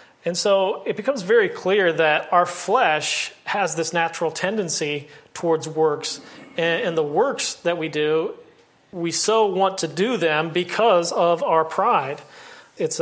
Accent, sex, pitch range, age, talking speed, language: American, male, 160-190 Hz, 40-59, 145 wpm, English